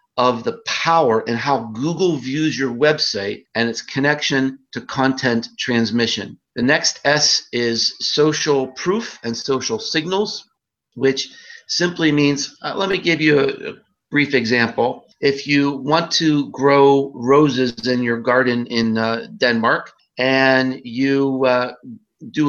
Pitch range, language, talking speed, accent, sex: 130-160 Hz, Danish, 140 wpm, American, male